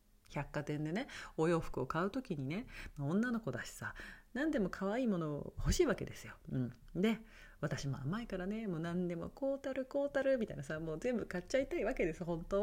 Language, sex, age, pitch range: Japanese, female, 40-59, 140-225 Hz